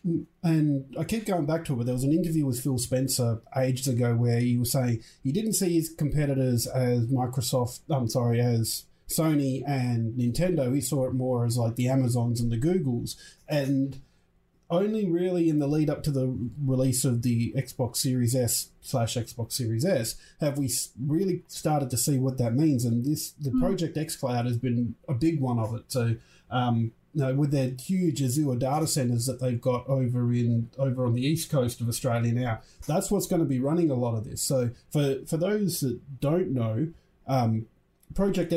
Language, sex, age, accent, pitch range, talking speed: English, male, 30-49, Australian, 120-150 Hz, 200 wpm